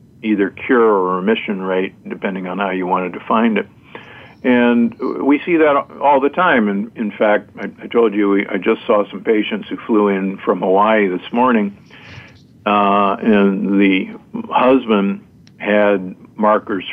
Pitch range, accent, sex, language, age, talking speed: 100-130 Hz, American, male, English, 50-69, 155 wpm